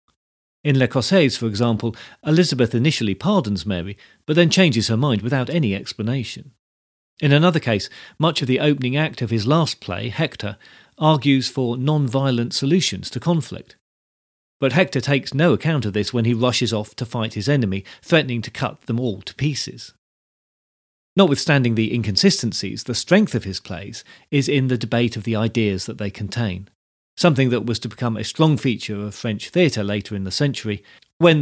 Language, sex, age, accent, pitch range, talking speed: English, male, 40-59, British, 110-145 Hz, 175 wpm